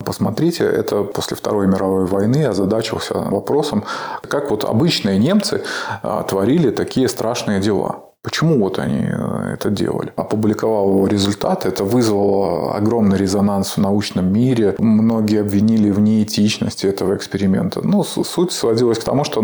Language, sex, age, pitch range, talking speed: Russian, male, 20-39, 100-110 Hz, 130 wpm